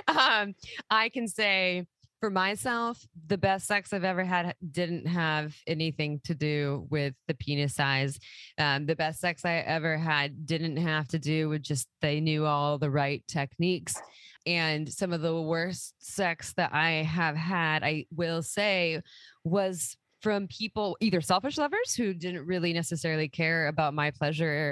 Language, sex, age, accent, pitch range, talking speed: English, female, 20-39, American, 150-180 Hz, 165 wpm